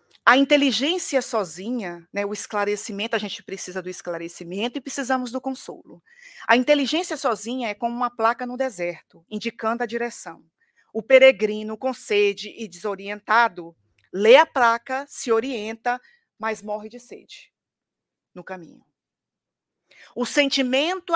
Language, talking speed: Portuguese, 130 wpm